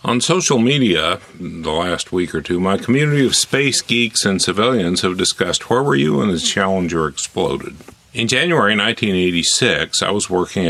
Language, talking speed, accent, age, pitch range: English, 170 wpm, American, 50-69, 85-115 Hz